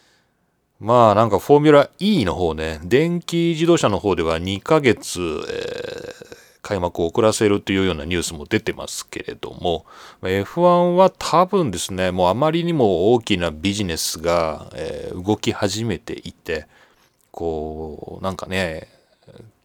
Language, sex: Japanese, male